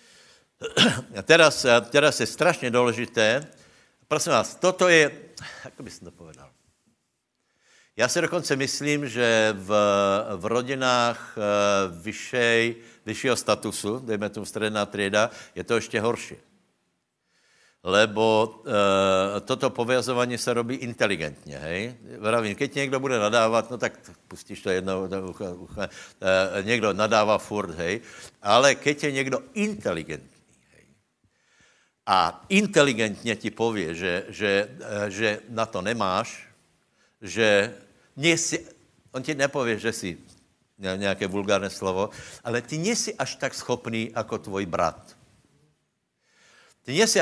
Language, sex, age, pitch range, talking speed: Slovak, male, 60-79, 105-135 Hz, 125 wpm